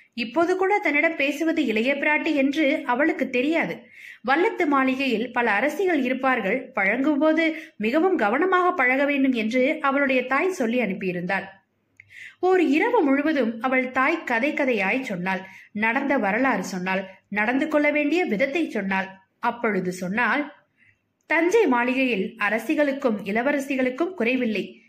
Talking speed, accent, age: 115 wpm, native, 20-39